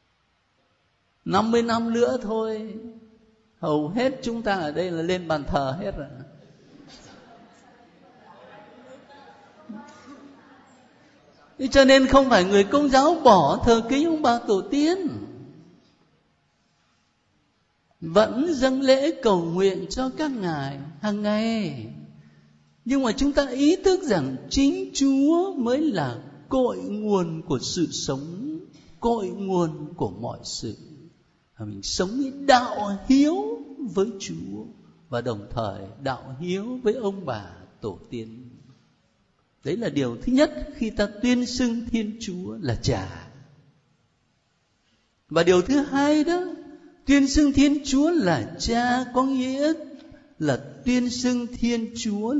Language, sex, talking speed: Vietnamese, male, 125 wpm